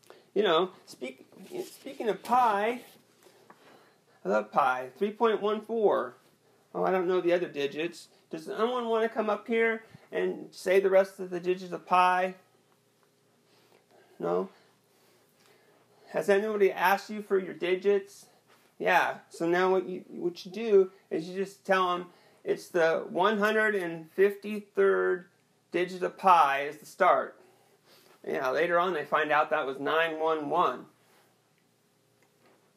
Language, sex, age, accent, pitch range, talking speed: English, male, 40-59, American, 170-210 Hz, 130 wpm